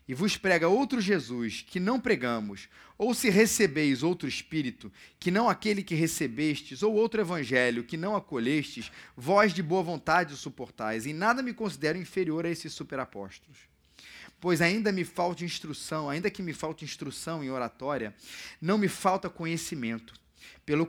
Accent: Brazilian